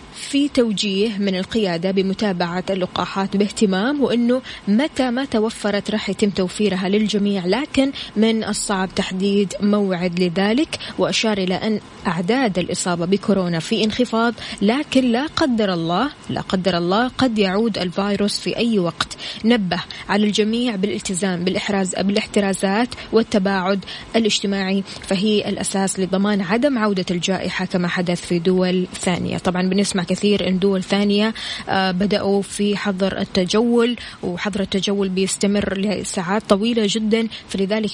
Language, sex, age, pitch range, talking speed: Arabic, female, 20-39, 195-230 Hz, 125 wpm